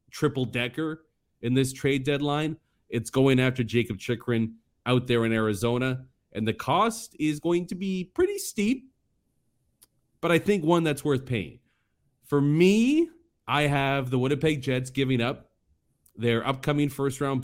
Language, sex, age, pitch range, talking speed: English, male, 30-49, 110-150 Hz, 145 wpm